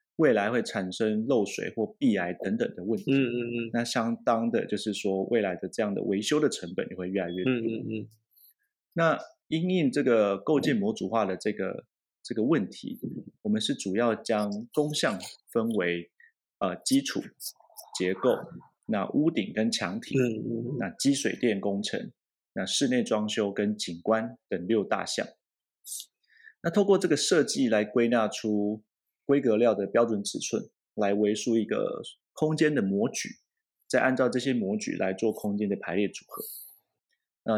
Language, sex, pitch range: Chinese, male, 100-135 Hz